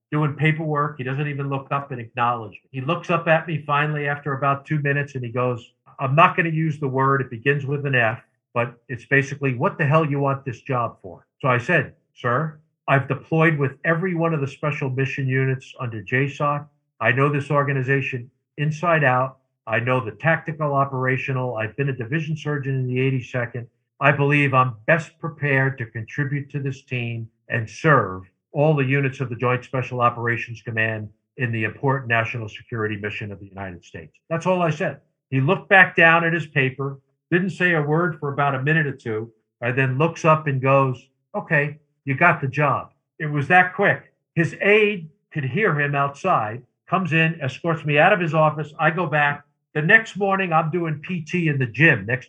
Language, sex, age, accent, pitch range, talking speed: English, male, 50-69, American, 125-155 Hz, 200 wpm